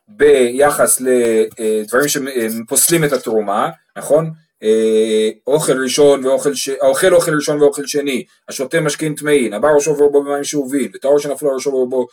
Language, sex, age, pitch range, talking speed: Hebrew, male, 30-49, 140-195 Hz, 155 wpm